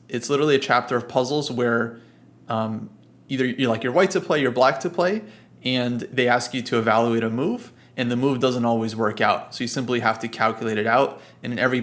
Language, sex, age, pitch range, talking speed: English, male, 30-49, 115-130 Hz, 230 wpm